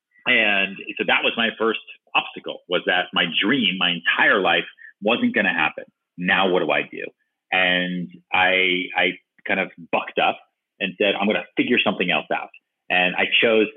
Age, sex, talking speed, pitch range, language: 30-49, male, 185 wpm, 95-120 Hz, English